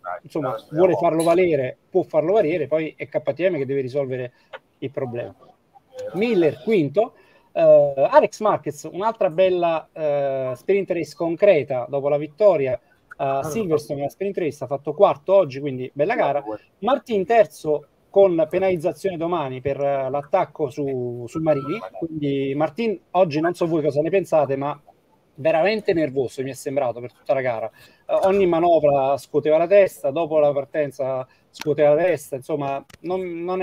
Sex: male